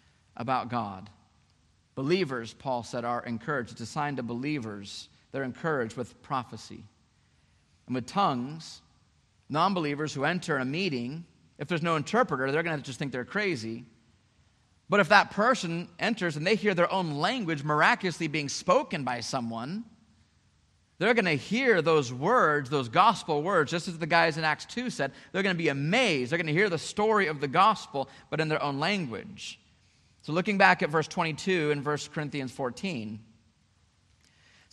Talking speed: 170 wpm